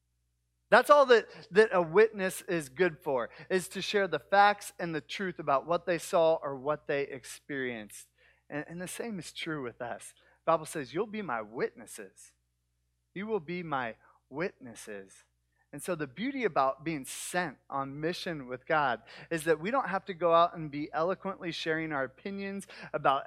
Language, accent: English, American